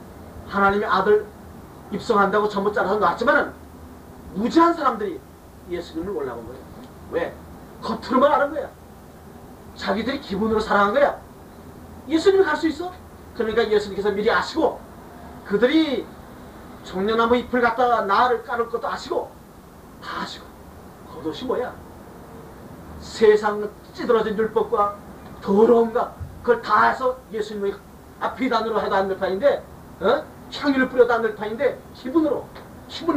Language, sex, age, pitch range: Korean, male, 40-59, 200-260 Hz